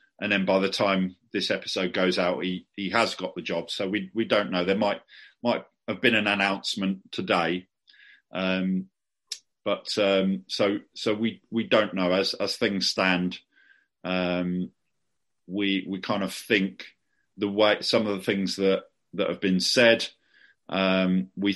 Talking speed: 165 wpm